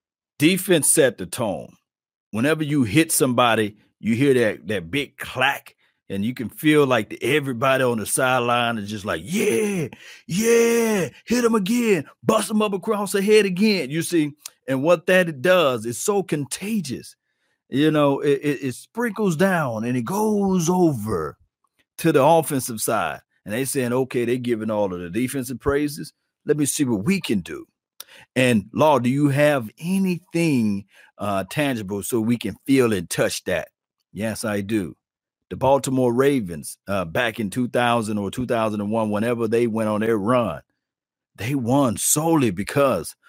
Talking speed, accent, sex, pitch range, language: 165 wpm, American, male, 115-165 Hz, English